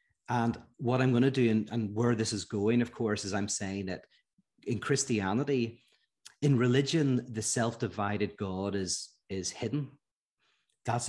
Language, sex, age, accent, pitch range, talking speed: English, male, 30-49, Irish, 100-120 Hz, 155 wpm